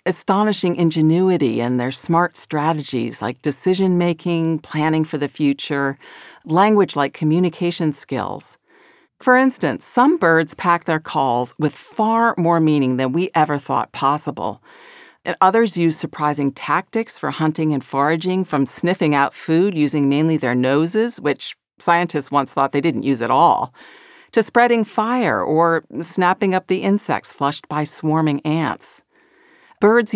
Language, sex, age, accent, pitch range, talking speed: English, female, 50-69, American, 140-185 Hz, 140 wpm